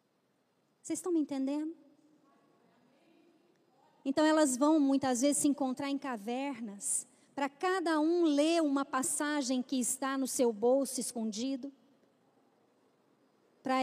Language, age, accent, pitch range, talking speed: Portuguese, 20-39, Brazilian, 255-305 Hz, 115 wpm